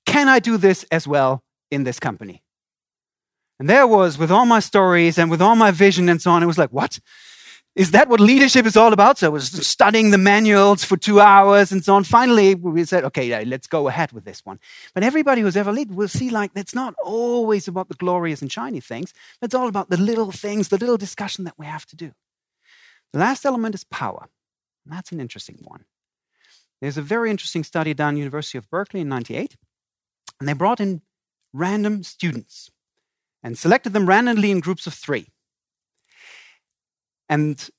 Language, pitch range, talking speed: Persian, 150-210 Hz, 200 wpm